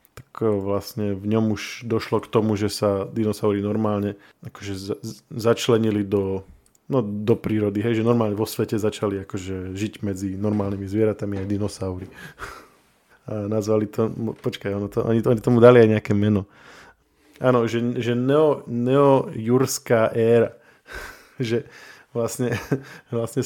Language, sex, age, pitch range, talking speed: Slovak, male, 20-39, 105-115 Hz, 135 wpm